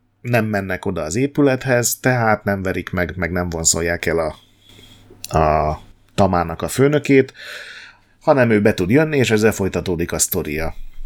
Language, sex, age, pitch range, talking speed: Hungarian, male, 30-49, 90-120 Hz, 150 wpm